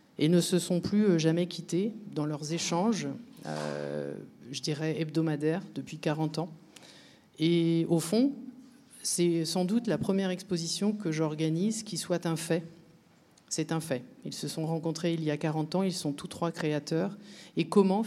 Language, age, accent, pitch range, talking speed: French, 50-69, French, 155-185 Hz, 170 wpm